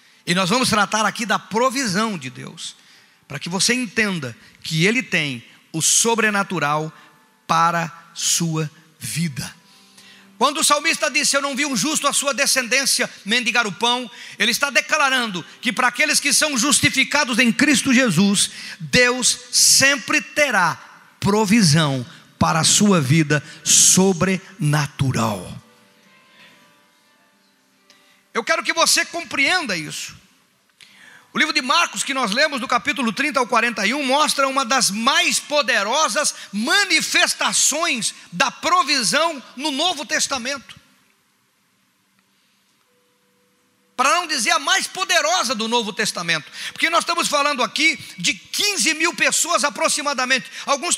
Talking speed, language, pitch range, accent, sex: 125 wpm, Portuguese, 195-290 Hz, Brazilian, male